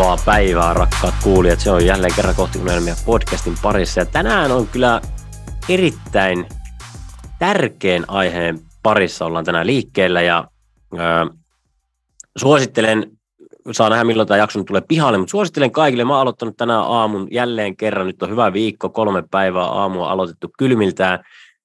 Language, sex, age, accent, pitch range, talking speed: Finnish, male, 30-49, native, 90-115 Hz, 140 wpm